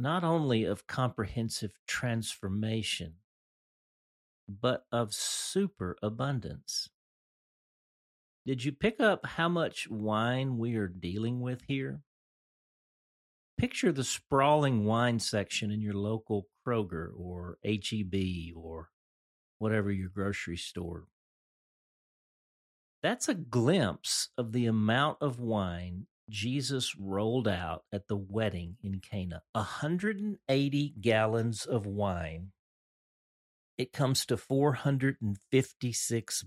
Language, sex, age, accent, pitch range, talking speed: English, male, 40-59, American, 95-130 Hz, 100 wpm